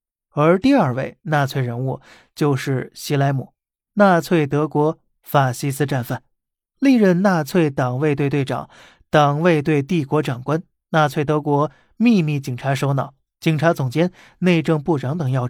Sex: male